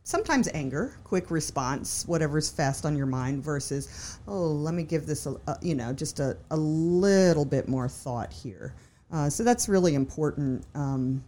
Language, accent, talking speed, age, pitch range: English, American, 170 wpm, 50-69, 135-165 Hz